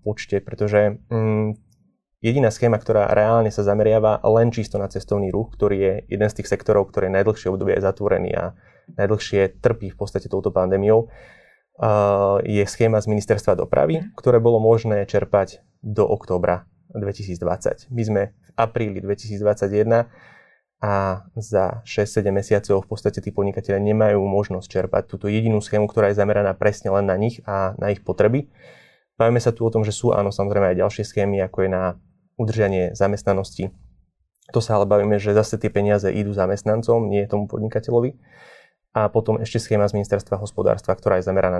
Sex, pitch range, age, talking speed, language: male, 100-115 Hz, 20-39, 160 wpm, Slovak